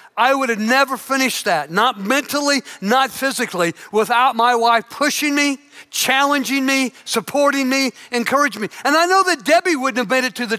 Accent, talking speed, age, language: American, 180 wpm, 50-69, English